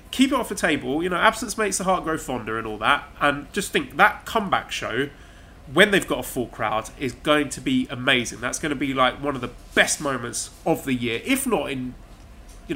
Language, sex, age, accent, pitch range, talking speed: English, male, 30-49, British, 120-150 Hz, 235 wpm